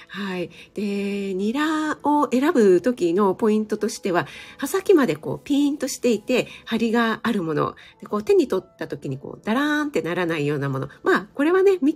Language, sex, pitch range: Japanese, female, 165-245 Hz